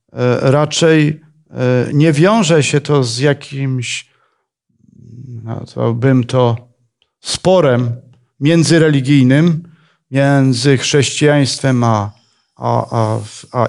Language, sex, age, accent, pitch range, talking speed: Polish, male, 40-59, native, 125-160 Hz, 75 wpm